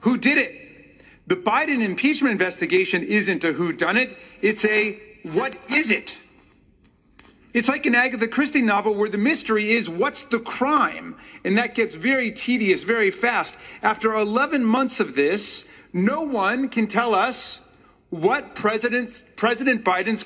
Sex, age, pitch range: male, 40-59, 200-255 Hz